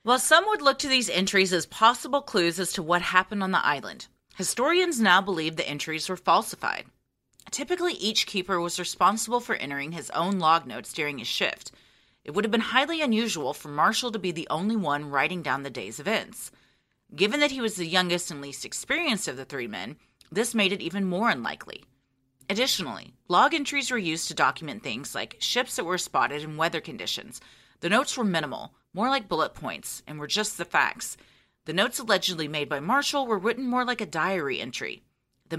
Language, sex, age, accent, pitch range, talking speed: English, female, 30-49, American, 165-230 Hz, 200 wpm